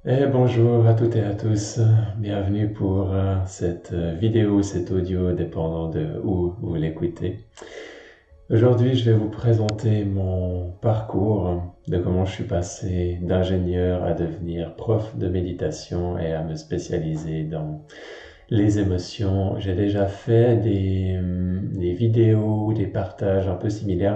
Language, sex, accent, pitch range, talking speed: French, male, French, 90-105 Hz, 130 wpm